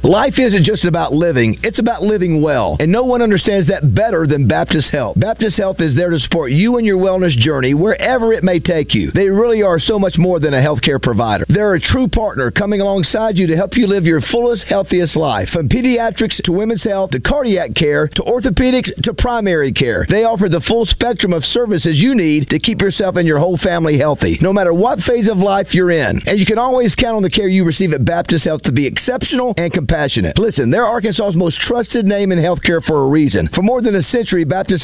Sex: male